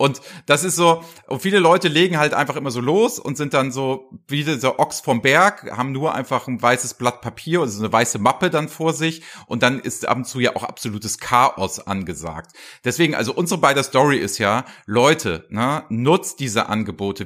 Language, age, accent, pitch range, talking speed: German, 40-59, German, 115-150 Hz, 210 wpm